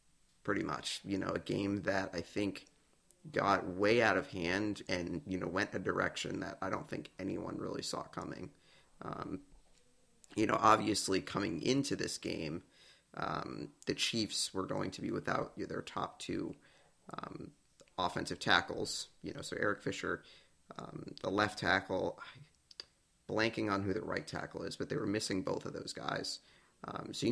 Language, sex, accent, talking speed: English, male, American, 170 wpm